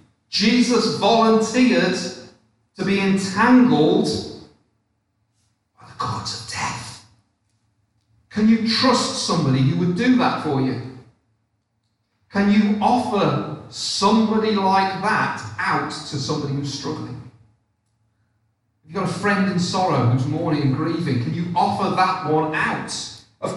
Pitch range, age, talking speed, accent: 125-195 Hz, 40-59, 120 wpm, British